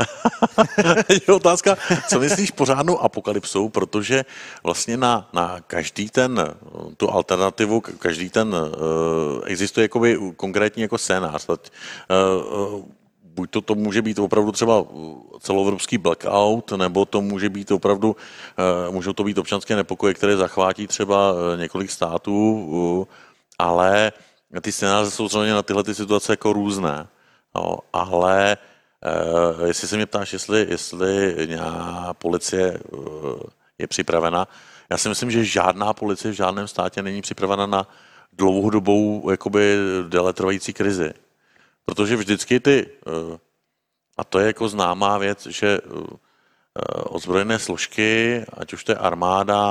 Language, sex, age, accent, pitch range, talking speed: Czech, male, 50-69, native, 95-110 Hz, 125 wpm